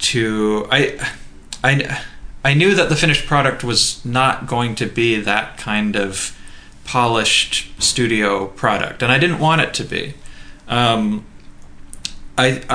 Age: 30-49